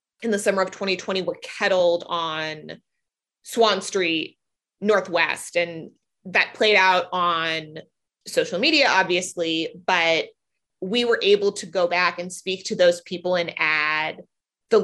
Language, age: English, 20-39